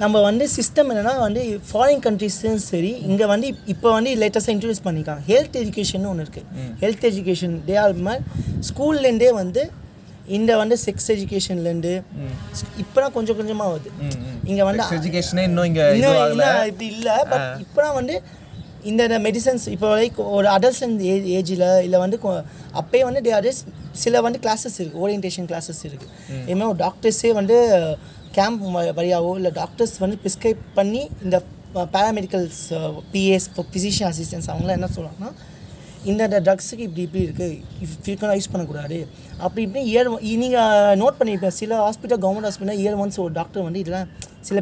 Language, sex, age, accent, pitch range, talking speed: Tamil, male, 20-39, native, 180-225 Hz, 140 wpm